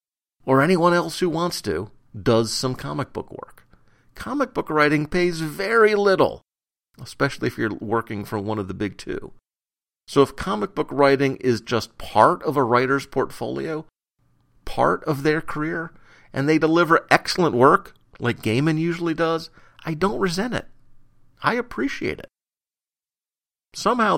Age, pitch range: 50-69, 110-155 Hz